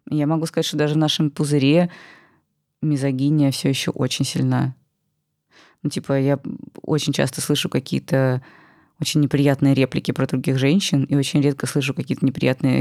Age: 20-39